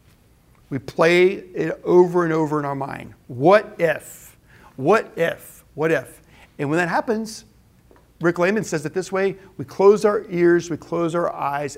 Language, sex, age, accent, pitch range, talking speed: English, male, 50-69, American, 155-205 Hz, 170 wpm